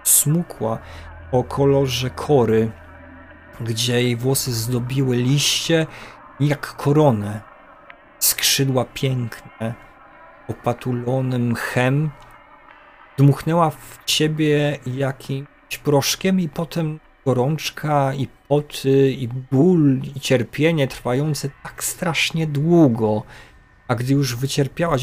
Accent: native